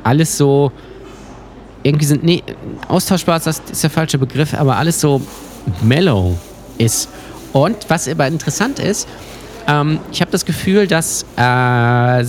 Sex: male